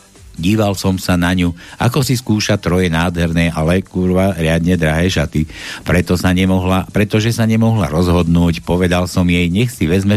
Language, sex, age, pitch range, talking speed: Slovak, male, 60-79, 90-110 Hz, 165 wpm